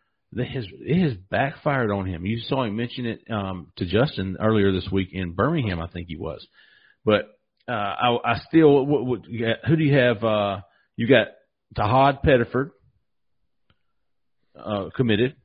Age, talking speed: 40-59, 155 wpm